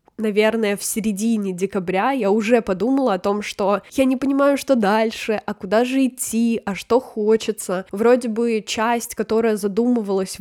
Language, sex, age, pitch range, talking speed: Russian, female, 10-29, 200-235 Hz, 155 wpm